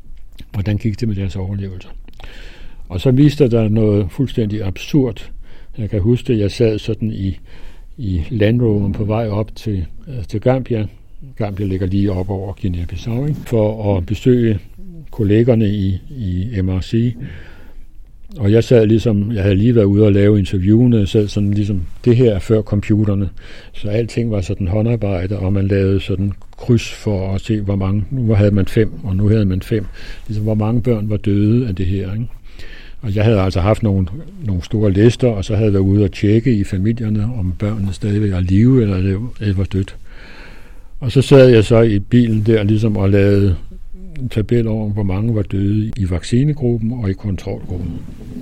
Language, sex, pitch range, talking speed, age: Danish, male, 95-115 Hz, 185 wpm, 60-79